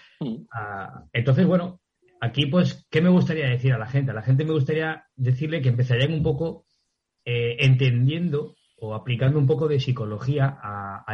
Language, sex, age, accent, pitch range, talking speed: Spanish, male, 30-49, Spanish, 120-150 Hz, 165 wpm